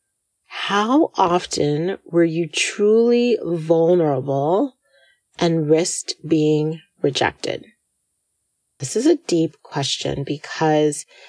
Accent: American